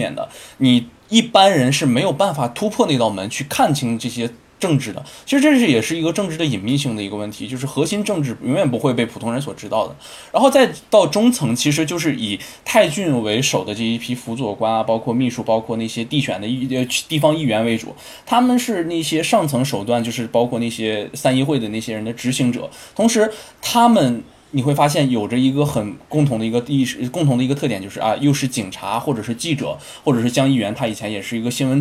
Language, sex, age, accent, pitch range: Chinese, male, 20-39, native, 115-150 Hz